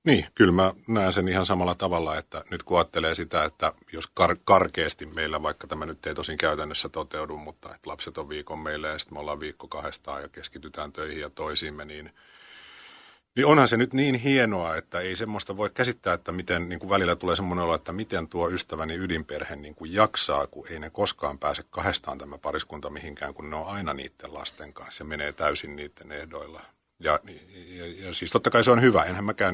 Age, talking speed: 50-69, 210 wpm